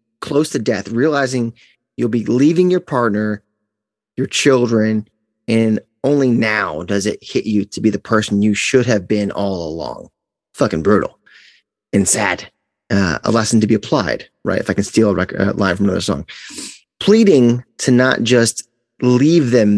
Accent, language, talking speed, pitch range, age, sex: American, English, 165 wpm, 100-120 Hz, 30-49, male